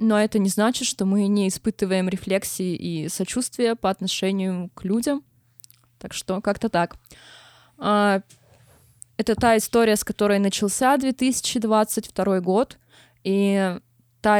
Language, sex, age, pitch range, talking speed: Russian, female, 20-39, 185-220 Hz, 120 wpm